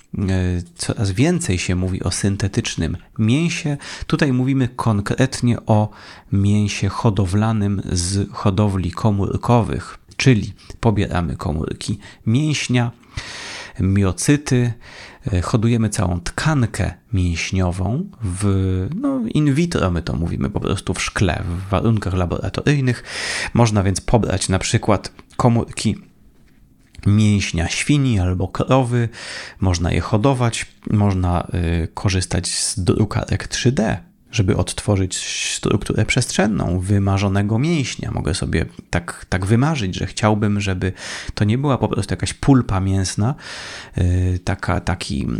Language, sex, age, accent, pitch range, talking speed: Polish, male, 30-49, native, 95-120 Hz, 105 wpm